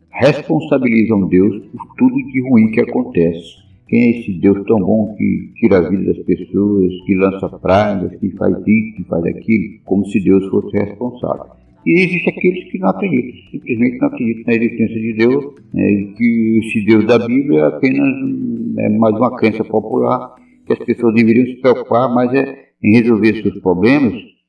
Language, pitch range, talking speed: Portuguese, 100-140 Hz, 175 wpm